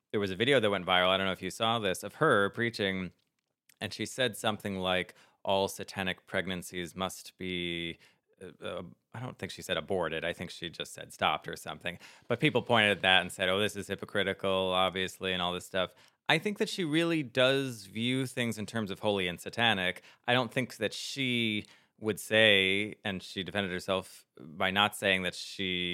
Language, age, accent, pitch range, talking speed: English, 20-39, American, 90-115 Hz, 205 wpm